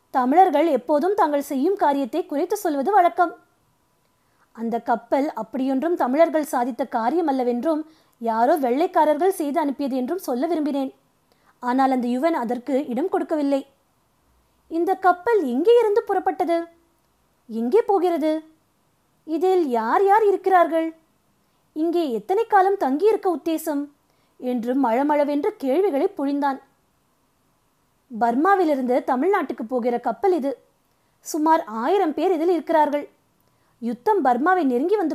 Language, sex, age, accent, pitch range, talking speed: Tamil, female, 20-39, native, 260-375 Hz, 105 wpm